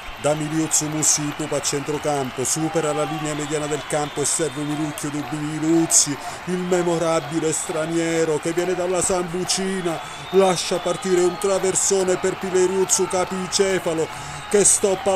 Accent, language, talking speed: native, Italian, 125 wpm